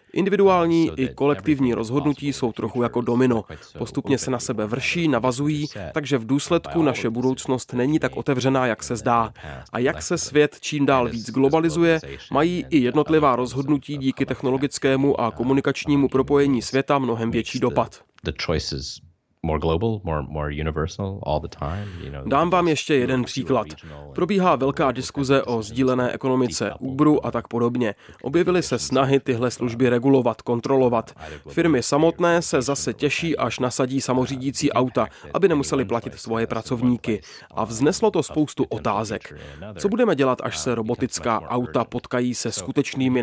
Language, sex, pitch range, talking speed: Czech, male, 120-145 Hz, 135 wpm